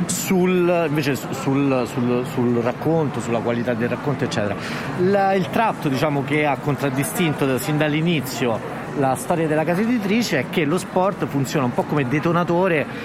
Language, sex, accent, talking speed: Italian, male, native, 165 wpm